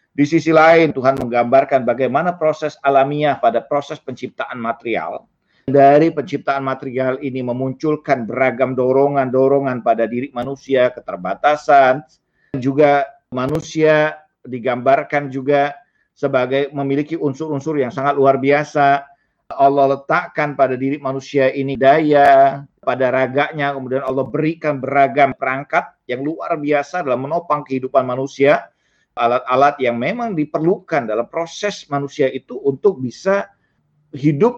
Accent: native